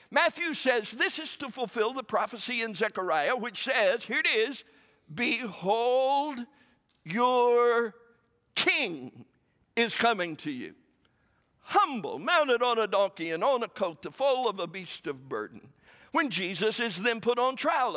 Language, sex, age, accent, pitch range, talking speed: English, male, 60-79, American, 205-285 Hz, 150 wpm